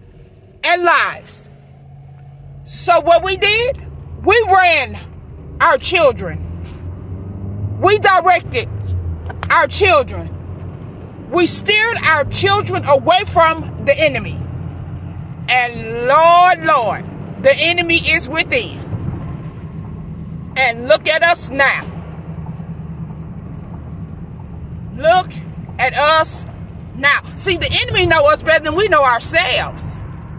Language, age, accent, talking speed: English, 40-59, American, 95 wpm